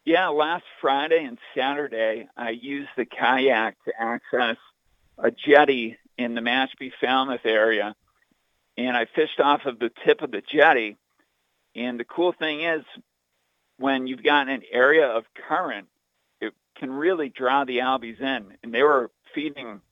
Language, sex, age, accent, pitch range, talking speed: English, male, 50-69, American, 120-160 Hz, 155 wpm